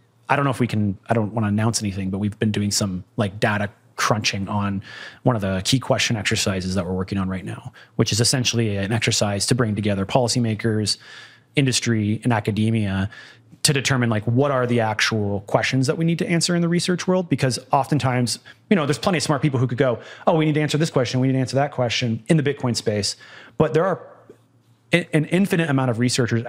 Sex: male